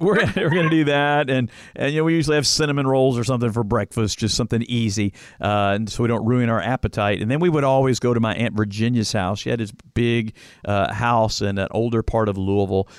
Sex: male